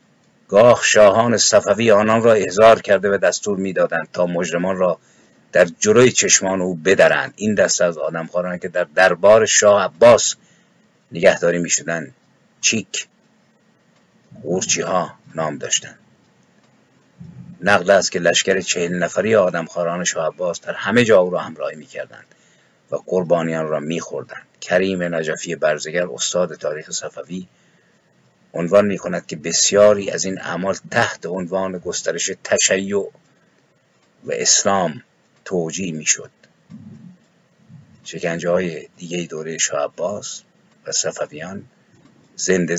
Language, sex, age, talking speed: Persian, male, 50-69, 120 wpm